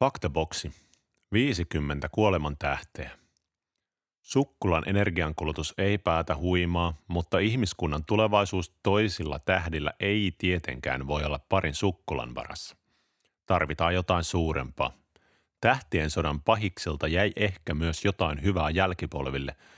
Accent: native